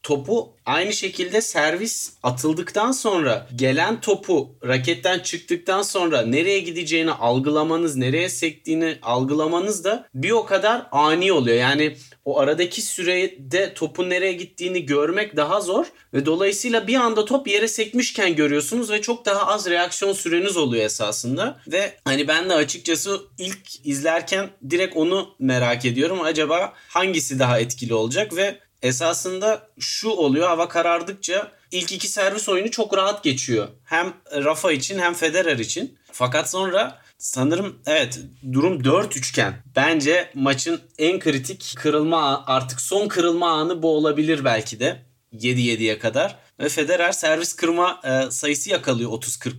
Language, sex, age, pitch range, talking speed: Turkish, male, 40-59, 140-195 Hz, 135 wpm